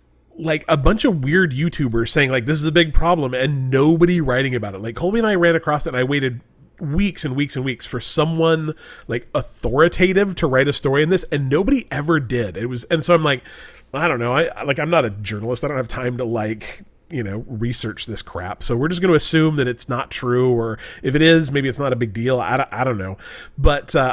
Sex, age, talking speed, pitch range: male, 30-49, 245 wpm, 120-160 Hz